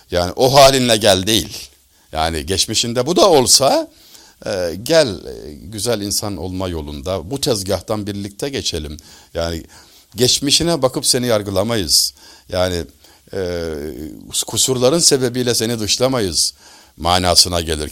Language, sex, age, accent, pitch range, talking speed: Turkish, male, 60-79, native, 95-140 Hz, 110 wpm